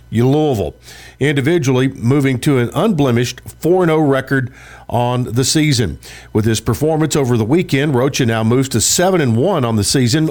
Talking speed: 150 wpm